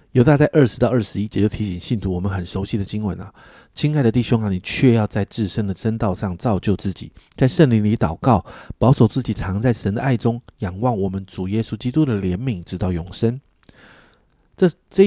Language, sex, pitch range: Chinese, male, 100-130 Hz